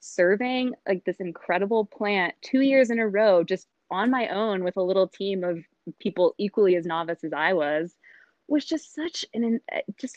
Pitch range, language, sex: 170-200 Hz, English, female